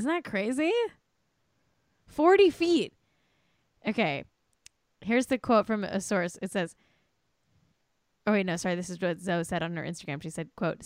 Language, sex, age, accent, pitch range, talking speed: English, female, 10-29, American, 175-235 Hz, 160 wpm